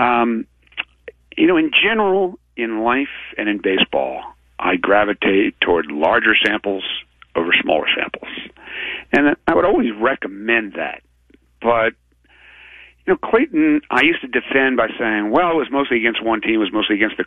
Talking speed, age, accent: 160 wpm, 50-69, American